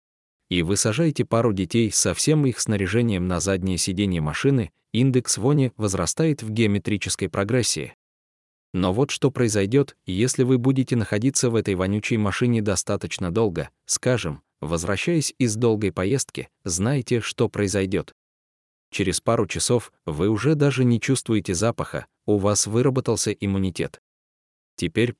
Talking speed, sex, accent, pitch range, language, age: 130 wpm, male, native, 95-120 Hz, Russian, 20-39